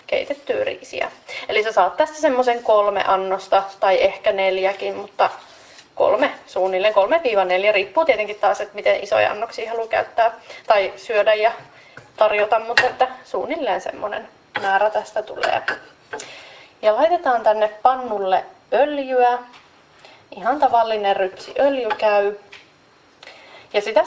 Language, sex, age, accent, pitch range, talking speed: Finnish, female, 30-49, native, 195-235 Hz, 115 wpm